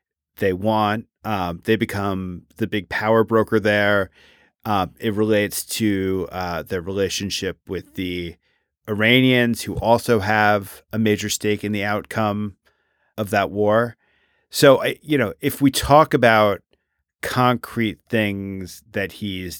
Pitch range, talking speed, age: 100-130 Hz, 135 wpm, 30-49